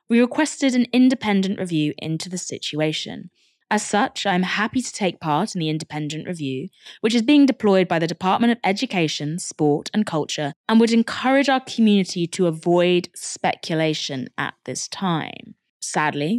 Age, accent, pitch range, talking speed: 20-39, British, 160-250 Hz, 160 wpm